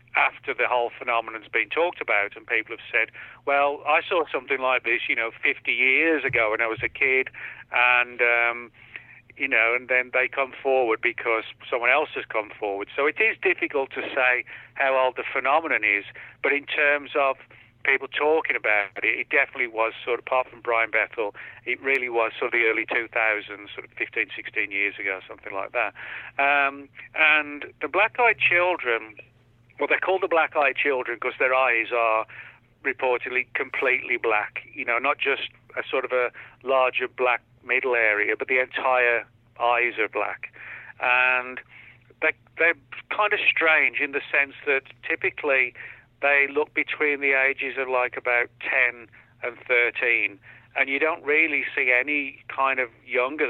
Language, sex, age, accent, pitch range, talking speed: English, male, 40-59, British, 120-140 Hz, 175 wpm